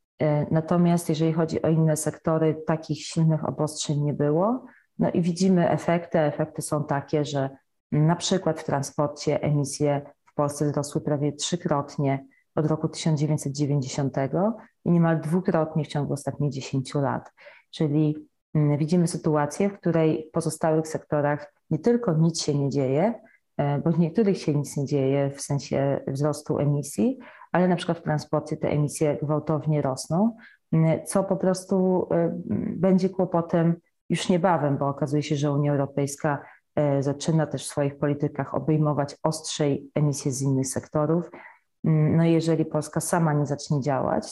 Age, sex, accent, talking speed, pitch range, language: 30-49, female, native, 145 wpm, 145-165 Hz, Polish